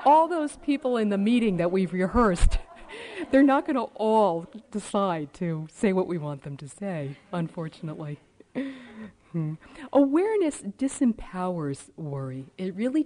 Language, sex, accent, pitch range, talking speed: English, female, American, 155-245 Hz, 140 wpm